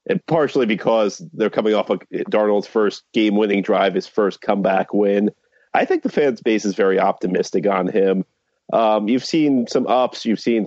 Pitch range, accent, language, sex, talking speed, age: 100-115 Hz, American, English, male, 180 wpm, 30-49